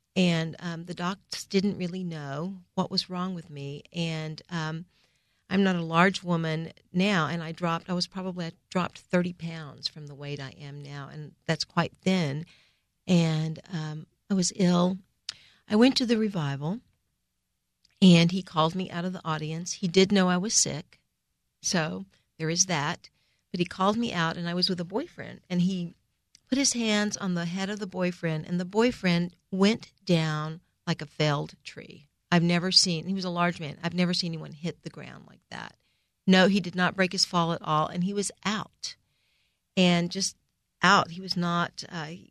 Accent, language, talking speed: American, English, 190 wpm